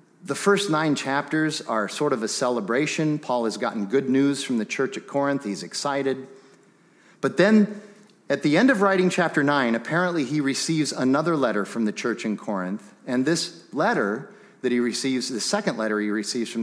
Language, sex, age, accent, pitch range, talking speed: English, male, 40-59, American, 115-170 Hz, 190 wpm